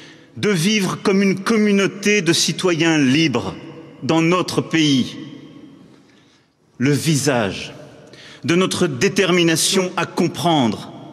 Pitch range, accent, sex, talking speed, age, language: 130-165 Hz, French, male, 95 wpm, 50-69, English